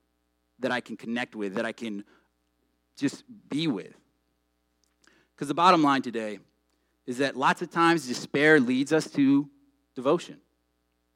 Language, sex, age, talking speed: English, male, 30-49, 140 wpm